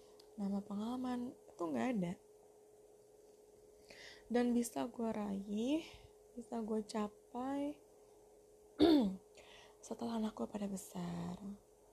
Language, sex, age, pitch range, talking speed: Indonesian, female, 20-39, 210-355 Hz, 85 wpm